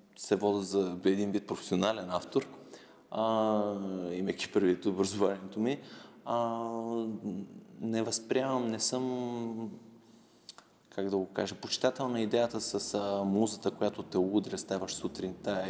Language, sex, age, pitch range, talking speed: Bulgarian, male, 20-39, 95-120 Hz, 115 wpm